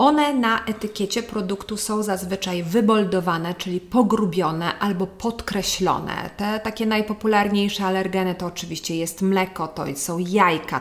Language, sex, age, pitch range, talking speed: Polish, female, 30-49, 180-205 Hz, 120 wpm